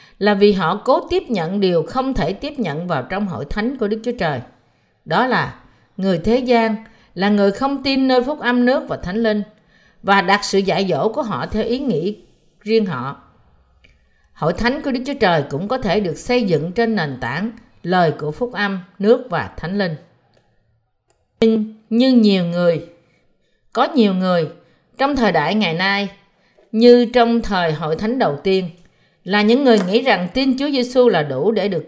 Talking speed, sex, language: 190 wpm, female, Vietnamese